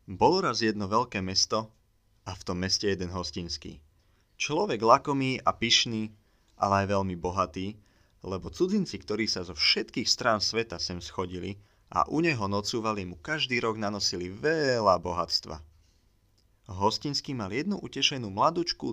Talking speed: 140 wpm